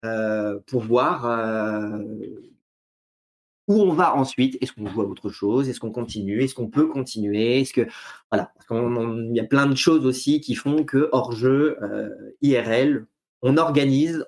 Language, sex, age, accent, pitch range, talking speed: French, male, 30-49, French, 125-165 Hz, 170 wpm